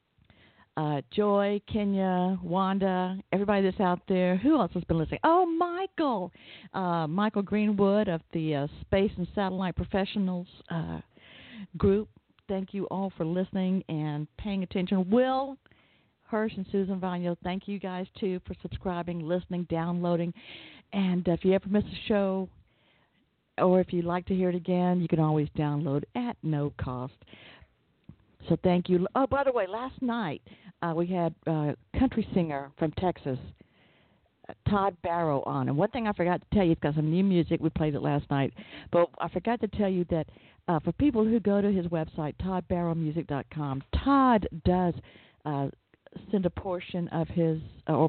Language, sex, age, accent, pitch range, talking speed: English, female, 50-69, American, 155-195 Hz, 170 wpm